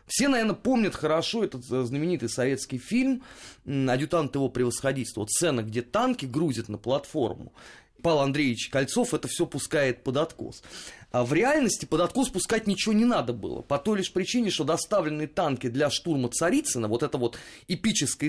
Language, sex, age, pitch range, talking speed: Russian, male, 30-49, 125-180 Hz, 165 wpm